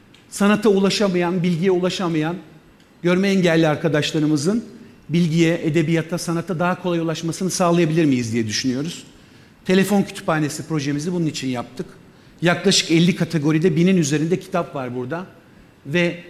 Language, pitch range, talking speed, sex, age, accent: Turkish, 145-175 Hz, 120 wpm, male, 50-69, native